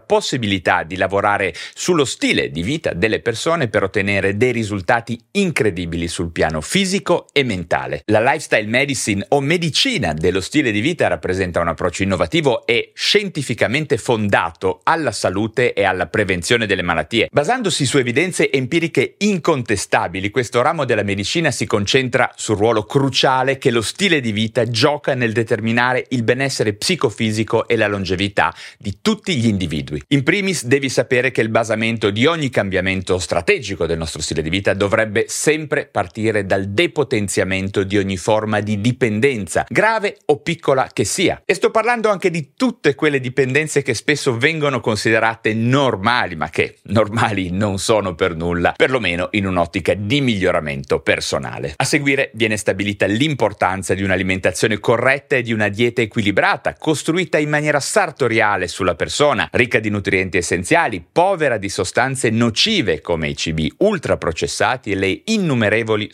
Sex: male